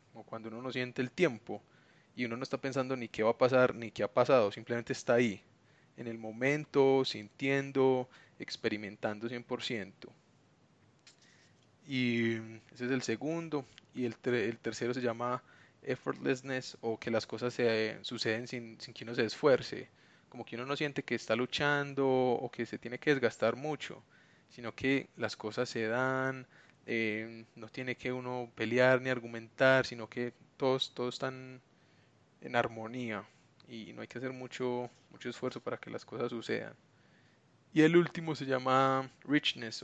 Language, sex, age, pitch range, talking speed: Spanish, male, 20-39, 115-130 Hz, 165 wpm